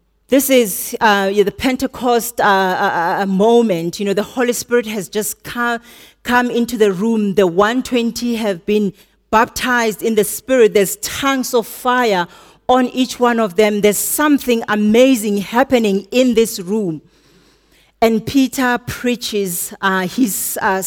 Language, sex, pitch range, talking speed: English, female, 205-250 Hz, 145 wpm